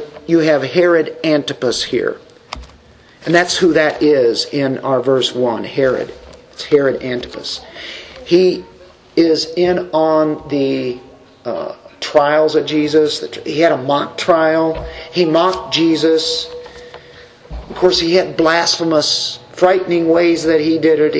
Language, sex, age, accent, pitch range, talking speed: English, male, 50-69, American, 150-180 Hz, 130 wpm